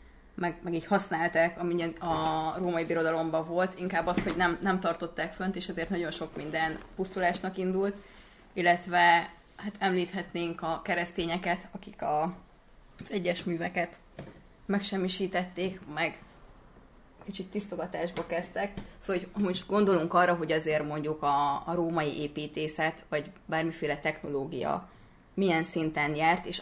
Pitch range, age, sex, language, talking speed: 160-180 Hz, 20-39, female, Hungarian, 130 wpm